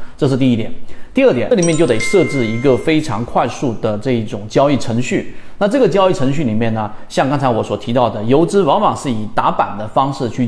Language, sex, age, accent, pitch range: Chinese, male, 30-49, native, 120-170 Hz